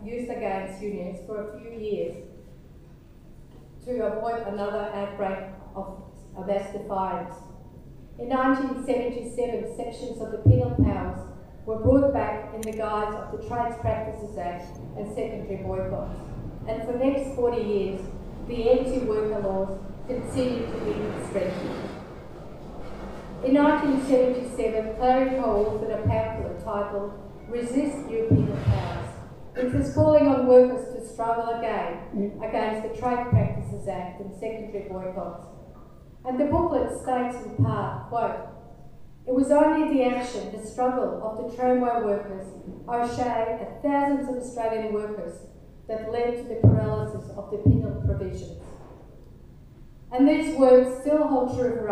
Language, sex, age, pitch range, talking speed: English, female, 40-59, 195-250 Hz, 135 wpm